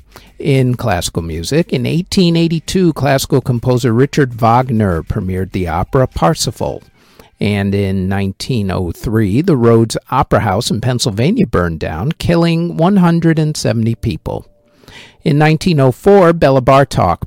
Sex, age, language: male, 50-69, English